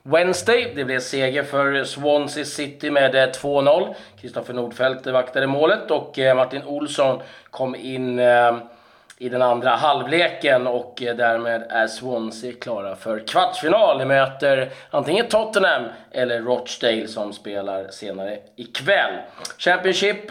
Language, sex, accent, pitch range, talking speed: Swedish, male, native, 120-145 Hz, 120 wpm